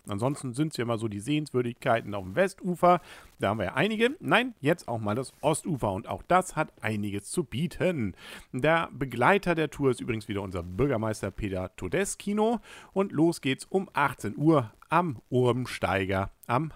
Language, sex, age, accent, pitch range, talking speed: German, male, 50-69, German, 105-160 Hz, 175 wpm